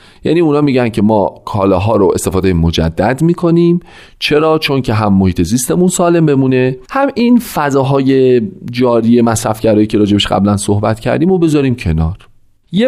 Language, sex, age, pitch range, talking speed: Persian, male, 40-59, 100-150 Hz, 150 wpm